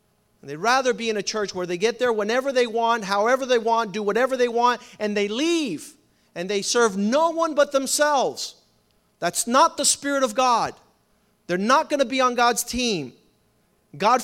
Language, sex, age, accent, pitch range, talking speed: English, male, 40-59, American, 200-250 Hz, 190 wpm